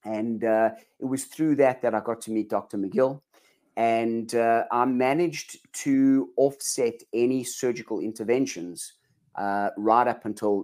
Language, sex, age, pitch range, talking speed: English, male, 30-49, 105-125 Hz, 145 wpm